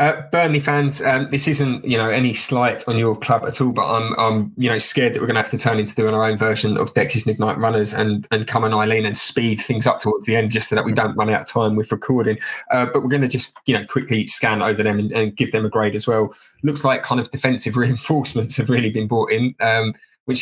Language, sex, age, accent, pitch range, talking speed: English, male, 20-39, British, 110-130 Hz, 265 wpm